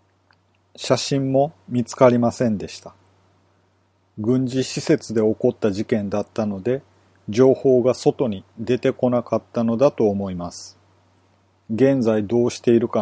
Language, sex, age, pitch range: Japanese, male, 40-59, 95-130 Hz